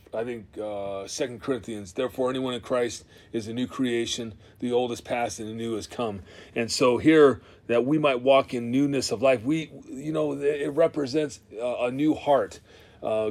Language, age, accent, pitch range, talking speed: English, 30-49, American, 115-140 Hz, 195 wpm